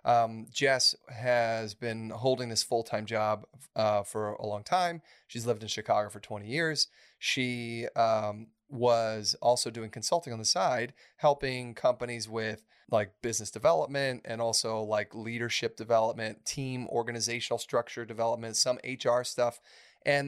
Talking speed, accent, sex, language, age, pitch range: 140 wpm, American, male, English, 30-49, 110-130 Hz